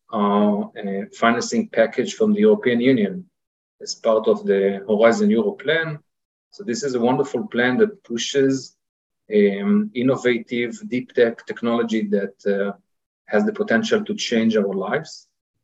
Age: 40-59